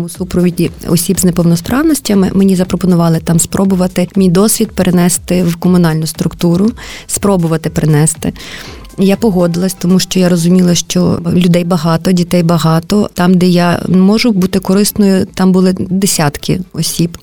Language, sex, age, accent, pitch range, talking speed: Ukrainian, female, 30-49, native, 175-200 Hz, 130 wpm